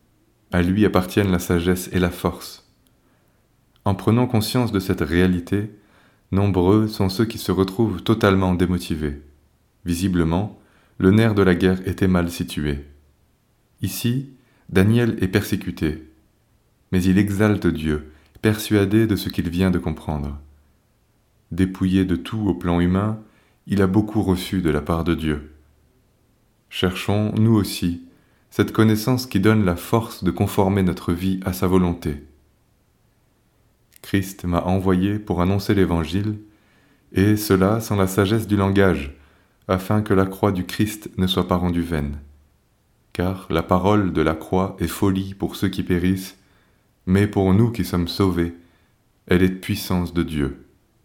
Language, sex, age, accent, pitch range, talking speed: French, male, 30-49, French, 85-105 Hz, 145 wpm